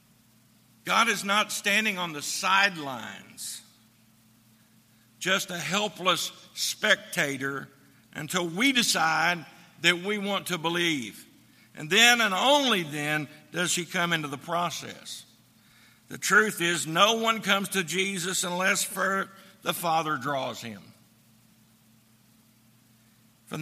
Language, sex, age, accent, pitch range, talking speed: English, male, 60-79, American, 120-185 Hz, 115 wpm